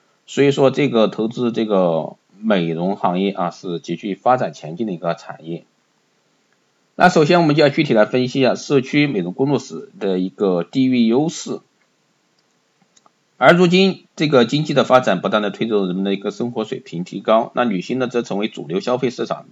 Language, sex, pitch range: Chinese, male, 95-130 Hz